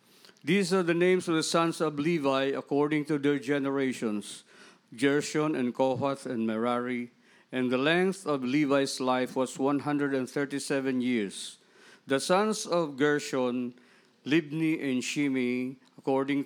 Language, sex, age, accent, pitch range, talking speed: English, male, 50-69, Filipino, 130-155 Hz, 130 wpm